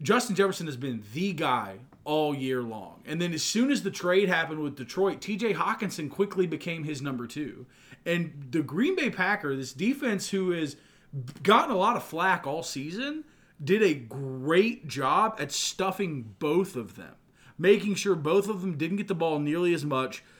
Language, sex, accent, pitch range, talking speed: English, male, American, 135-175 Hz, 185 wpm